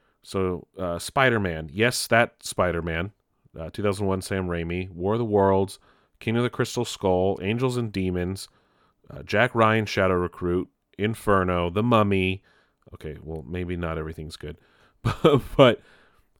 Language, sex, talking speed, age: English, male, 145 wpm, 30-49